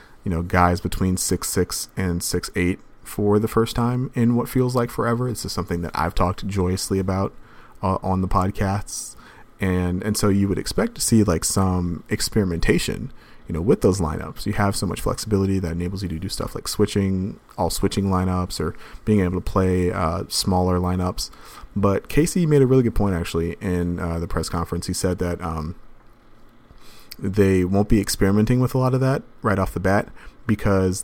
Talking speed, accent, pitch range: 195 wpm, American, 90-105 Hz